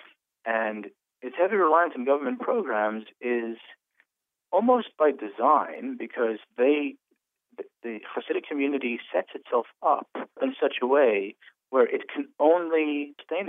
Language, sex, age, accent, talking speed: English, male, 40-59, American, 125 wpm